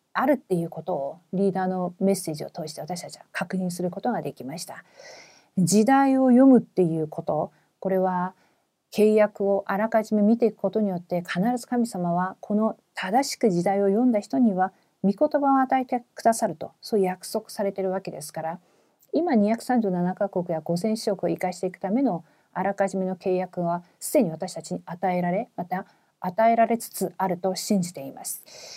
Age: 40-59